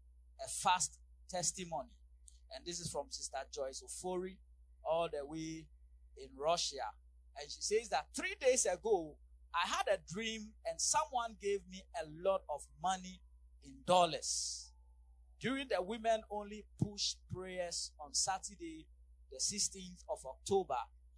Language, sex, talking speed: English, male, 135 wpm